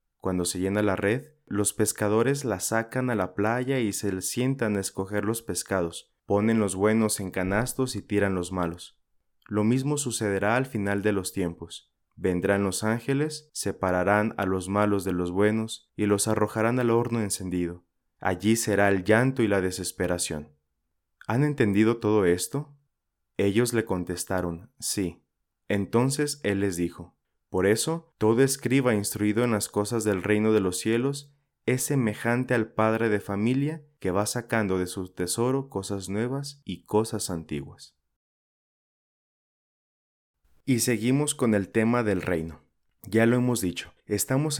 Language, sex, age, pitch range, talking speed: Spanish, male, 20-39, 95-120 Hz, 150 wpm